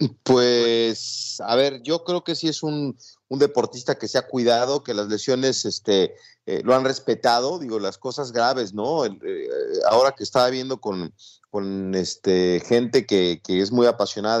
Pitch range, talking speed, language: 105-135 Hz, 185 wpm, Spanish